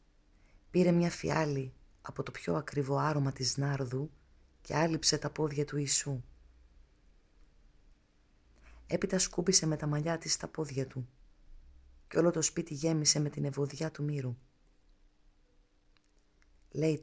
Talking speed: 125 wpm